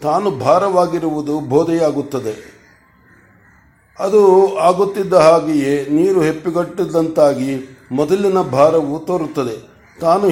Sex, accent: male, native